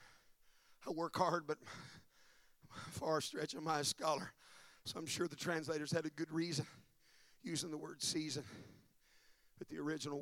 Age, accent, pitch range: 40-59, American, 135-170 Hz